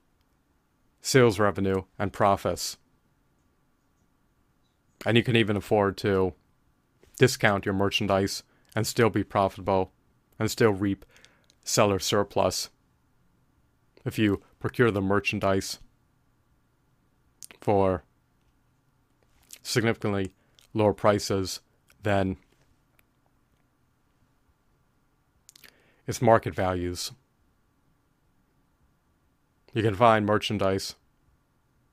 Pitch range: 95-110 Hz